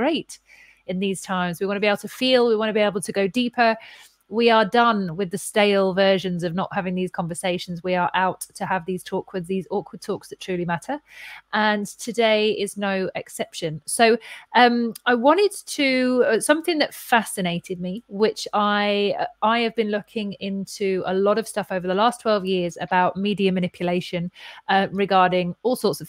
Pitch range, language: 185-225 Hz, English